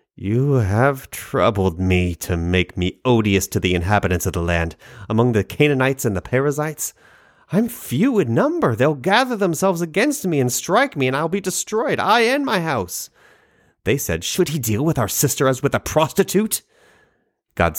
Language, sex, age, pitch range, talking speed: English, male, 30-49, 95-145 Hz, 180 wpm